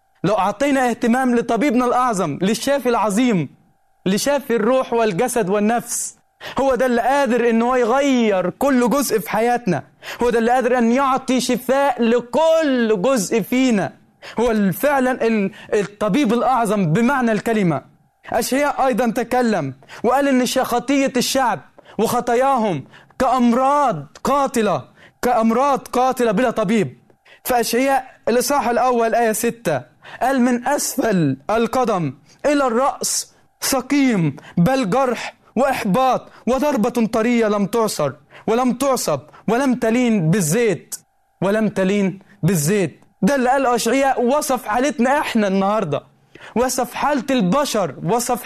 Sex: male